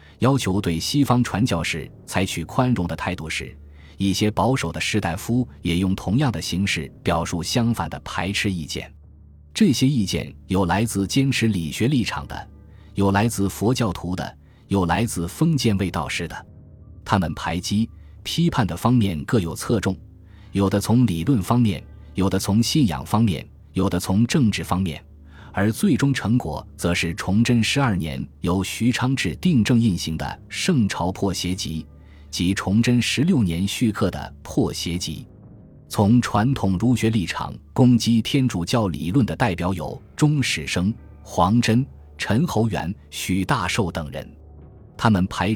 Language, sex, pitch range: Chinese, male, 85-115 Hz